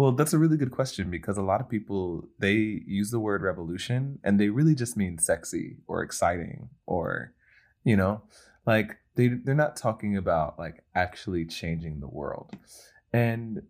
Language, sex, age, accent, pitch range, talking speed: English, male, 20-39, American, 85-120 Hz, 175 wpm